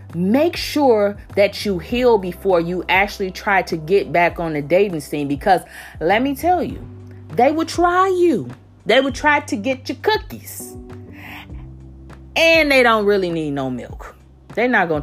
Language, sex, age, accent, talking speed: English, female, 30-49, American, 170 wpm